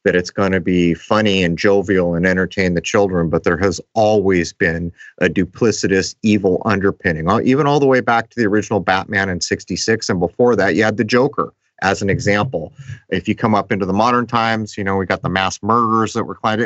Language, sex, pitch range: English, male, 95-110 Hz